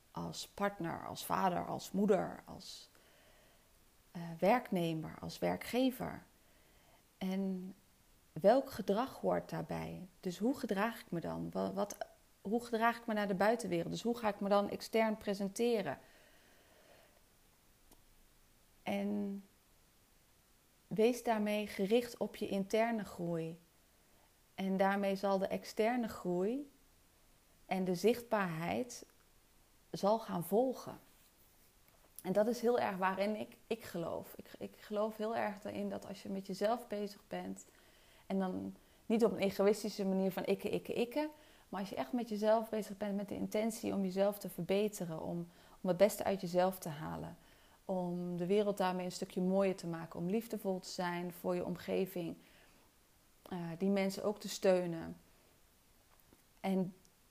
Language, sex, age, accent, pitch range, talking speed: Dutch, female, 30-49, Dutch, 180-215 Hz, 140 wpm